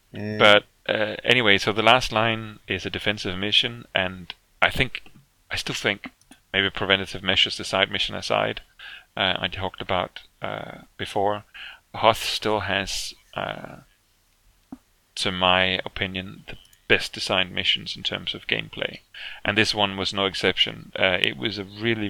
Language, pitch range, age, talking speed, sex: English, 95-105 Hz, 30-49, 150 wpm, male